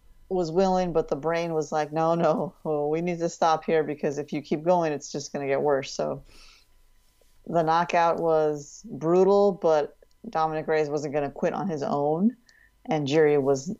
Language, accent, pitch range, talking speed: English, American, 150-180 Hz, 190 wpm